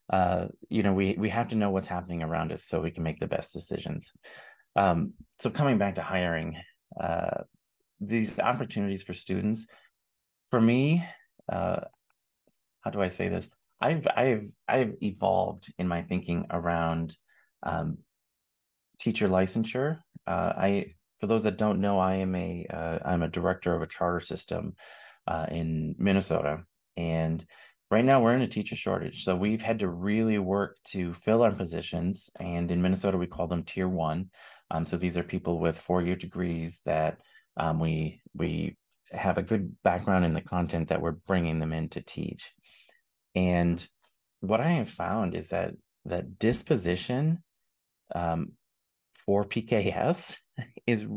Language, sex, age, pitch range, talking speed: English, male, 30-49, 85-105 Hz, 160 wpm